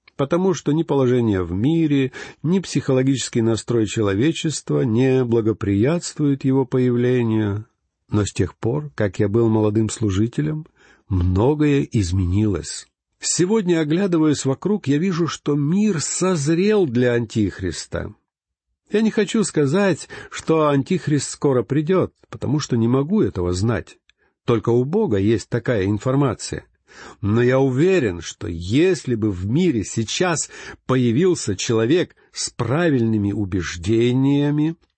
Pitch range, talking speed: 110-155 Hz, 120 wpm